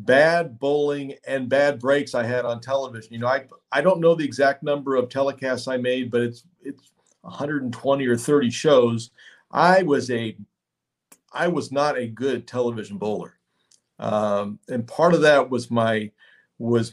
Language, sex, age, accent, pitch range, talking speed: English, male, 40-59, American, 120-145 Hz, 165 wpm